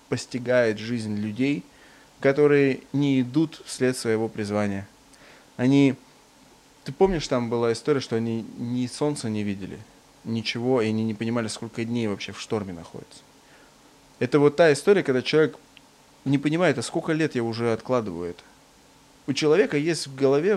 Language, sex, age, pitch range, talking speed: Russian, male, 20-39, 110-145 Hz, 150 wpm